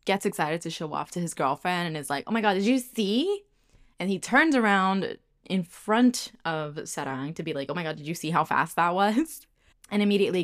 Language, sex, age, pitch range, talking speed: English, female, 20-39, 155-205 Hz, 230 wpm